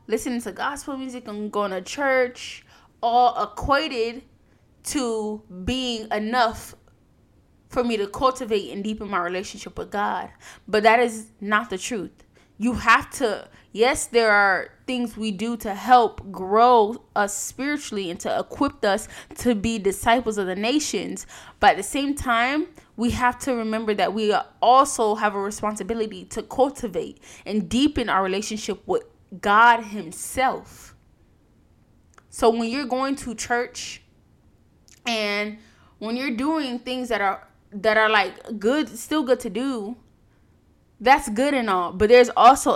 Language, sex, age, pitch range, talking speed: English, female, 20-39, 210-255 Hz, 145 wpm